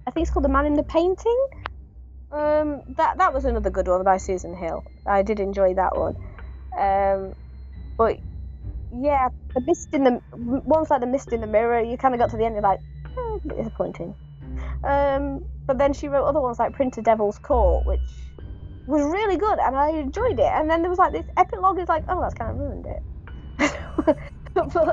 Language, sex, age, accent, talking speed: English, female, 20-39, British, 200 wpm